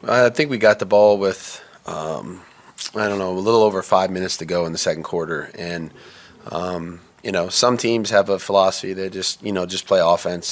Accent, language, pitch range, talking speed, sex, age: American, English, 90-100 Hz, 215 wpm, male, 30-49